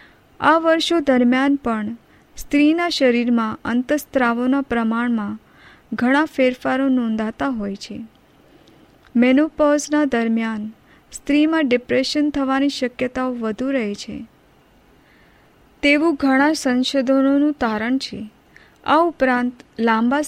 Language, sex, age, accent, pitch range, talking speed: Hindi, female, 30-49, native, 235-280 Hz, 75 wpm